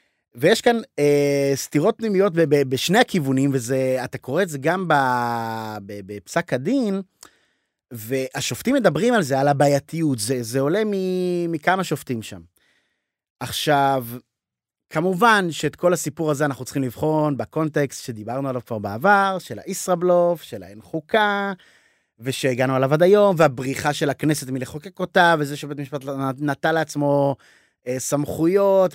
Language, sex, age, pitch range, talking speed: Hebrew, male, 30-49, 130-180 Hz, 135 wpm